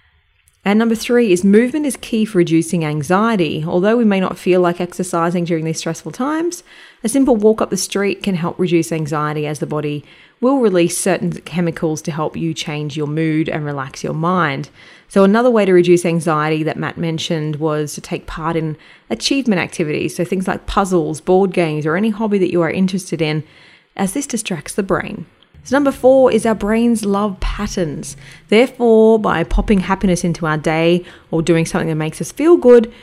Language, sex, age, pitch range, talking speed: English, female, 30-49, 160-215 Hz, 195 wpm